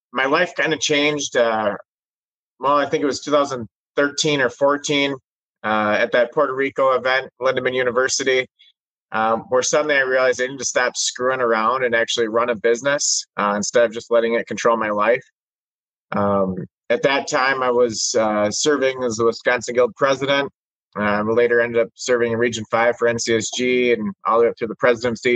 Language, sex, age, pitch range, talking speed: English, male, 30-49, 115-140 Hz, 185 wpm